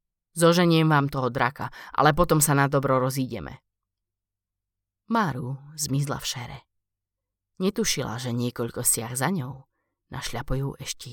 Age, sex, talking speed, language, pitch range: 20-39, female, 120 wpm, Slovak, 125-155 Hz